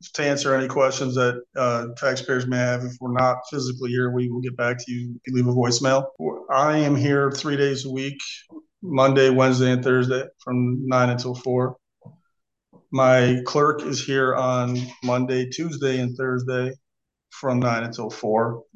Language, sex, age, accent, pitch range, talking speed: English, male, 40-59, American, 125-140 Hz, 160 wpm